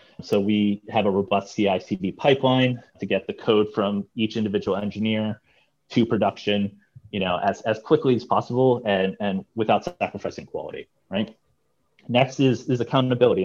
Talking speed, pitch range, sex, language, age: 150 wpm, 100-120 Hz, male, English, 30-49